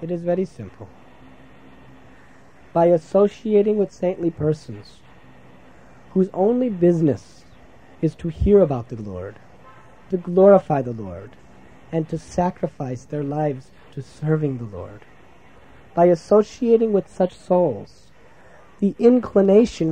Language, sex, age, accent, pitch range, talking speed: English, male, 40-59, American, 120-180 Hz, 115 wpm